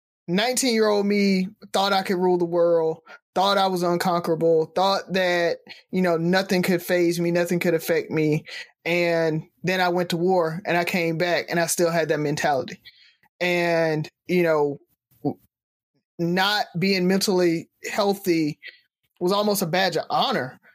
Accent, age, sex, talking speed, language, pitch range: American, 20-39, male, 160 wpm, English, 165-195 Hz